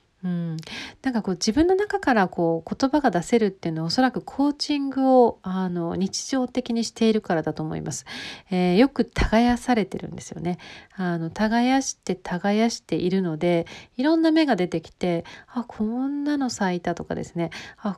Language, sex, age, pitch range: Japanese, female, 40-59, 175-240 Hz